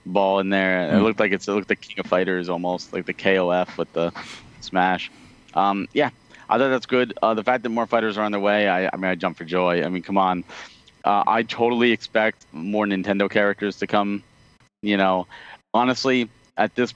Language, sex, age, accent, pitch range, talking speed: English, male, 30-49, American, 95-110 Hz, 220 wpm